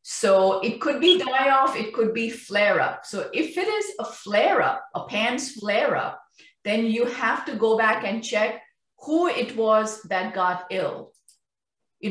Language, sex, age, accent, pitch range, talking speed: English, female, 50-69, Indian, 185-250 Hz, 185 wpm